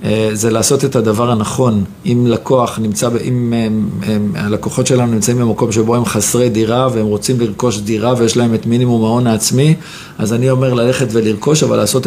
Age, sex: 50-69, male